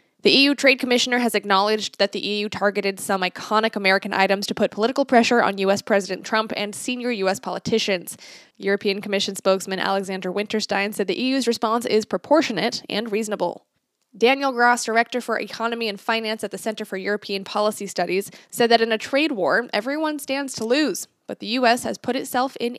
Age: 10-29